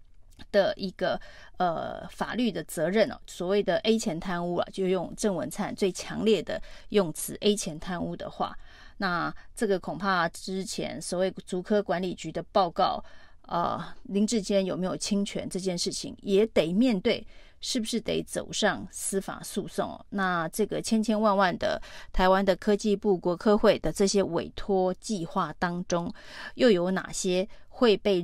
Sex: female